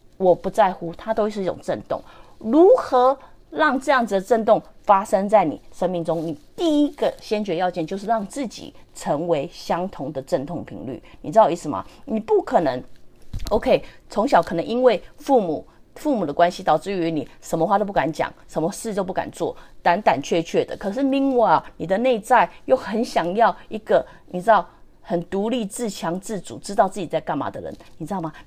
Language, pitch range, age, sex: English, 165-230 Hz, 30-49, female